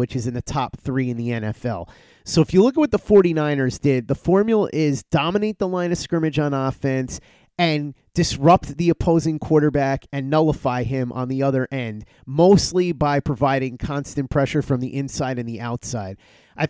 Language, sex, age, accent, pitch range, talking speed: English, male, 30-49, American, 130-170 Hz, 185 wpm